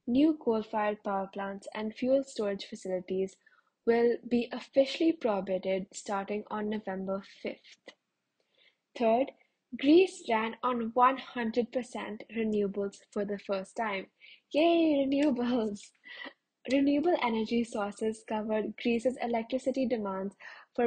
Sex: female